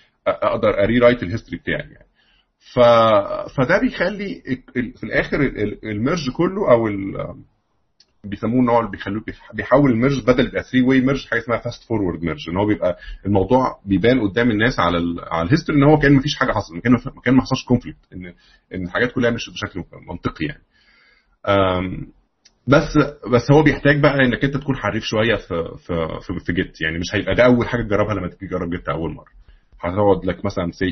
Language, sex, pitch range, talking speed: Arabic, male, 90-125 Hz, 185 wpm